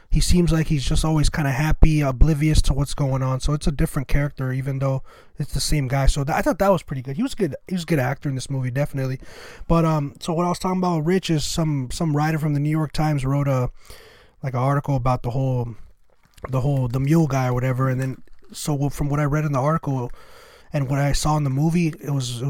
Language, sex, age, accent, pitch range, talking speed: English, male, 20-39, American, 135-155 Hz, 265 wpm